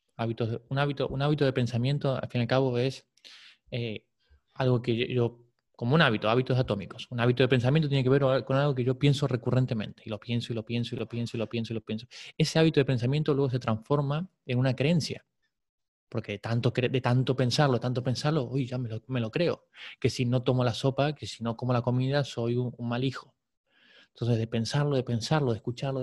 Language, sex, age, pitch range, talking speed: English, male, 20-39, 115-135 Hz, 235 wpm